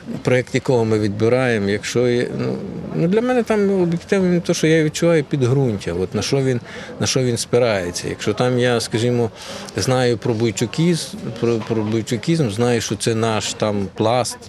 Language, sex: Ukrainian, male